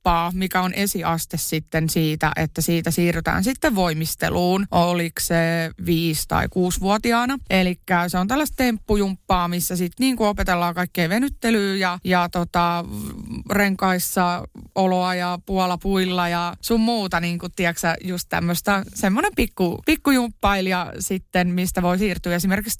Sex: female